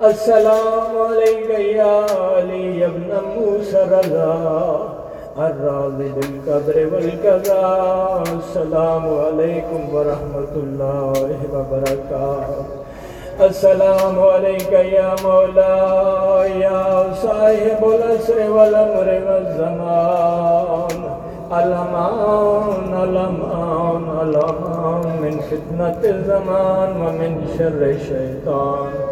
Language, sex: Urdu, male